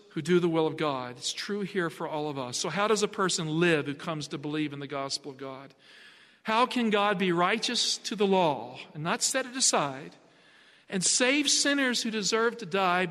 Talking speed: 220 wpm